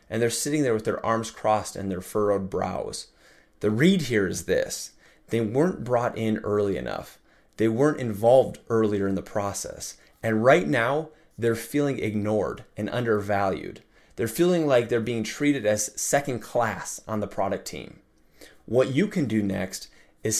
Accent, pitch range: American, 105-130 Hz